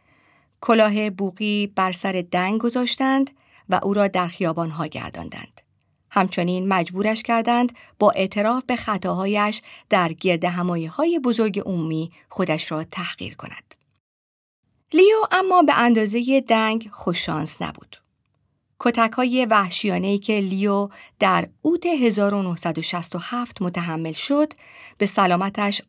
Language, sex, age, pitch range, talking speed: Persian, female, 50-69, 180-235 Hz, 110 wpm